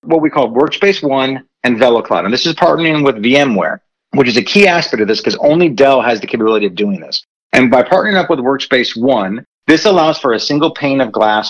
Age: 40-59